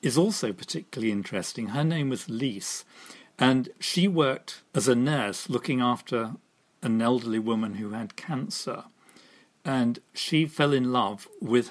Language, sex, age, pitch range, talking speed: English, male, 50-69, 110-130 Hz, 145 wpm